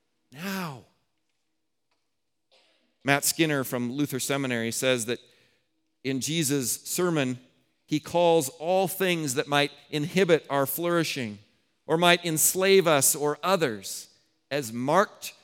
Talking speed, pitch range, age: 110 wpm, 130-175 Hz, 40-59